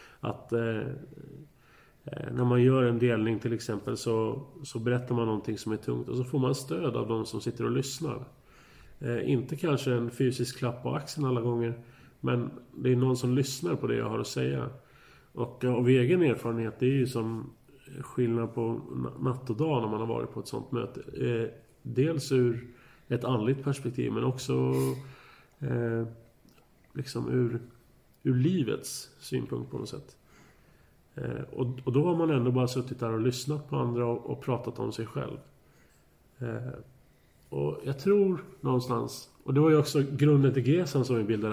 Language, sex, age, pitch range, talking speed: Swedish, male, 30-49, 115-135 Hz, 180 wpm